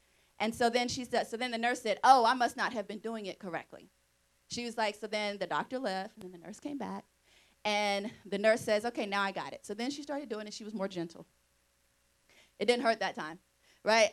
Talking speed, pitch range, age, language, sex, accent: 250 wpm, 180-240 Hz, 30-49, English, female, American